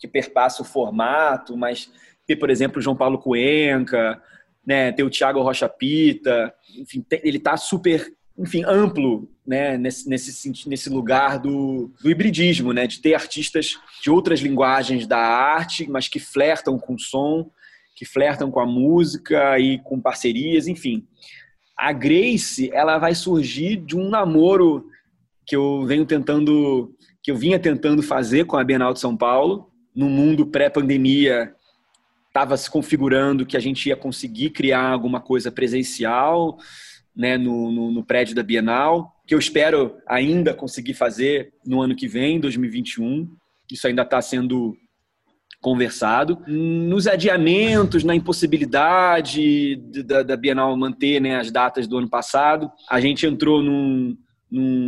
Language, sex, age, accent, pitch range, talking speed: Portuguese, male, 20-39, Brazilian, 130-170 Hz, 150 wpm